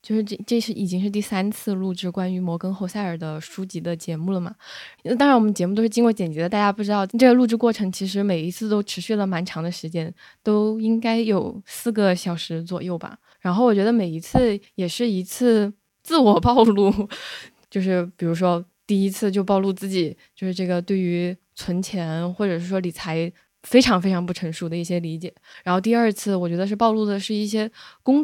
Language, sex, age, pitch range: Chinese, female, 20-39, 180-225 Hz